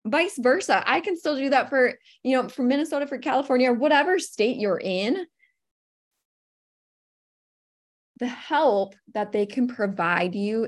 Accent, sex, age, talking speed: American, female, 20-39, 145 wpm